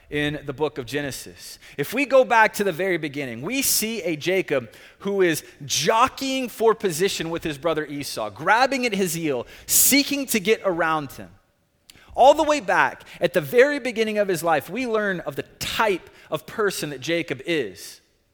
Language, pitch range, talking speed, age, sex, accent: English, 150-220 Hz, 185 wpm, 30-49, male, American